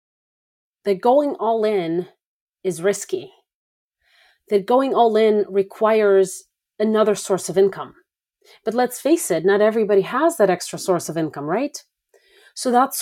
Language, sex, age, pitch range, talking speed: English, female, 30-49, 180-220 Hz, 140 wpm